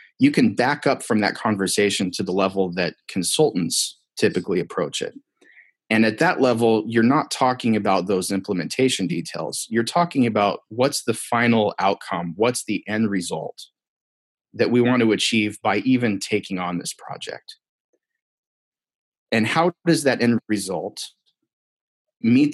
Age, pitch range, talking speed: 30-49, 100-125 Hz, 145 wpm